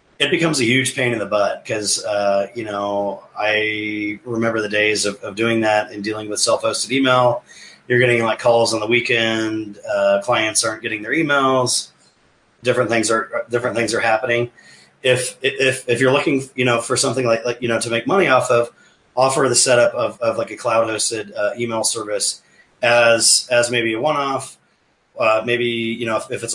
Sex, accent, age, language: male, American, 30-49, English